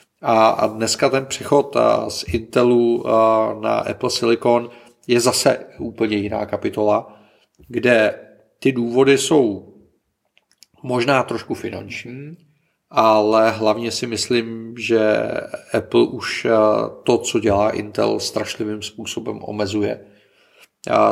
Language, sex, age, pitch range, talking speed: Czech, male, 40-59, 105-115 Hz, 100 wpm